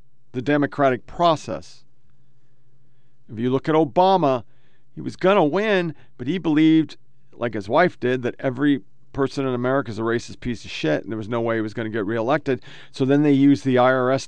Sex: male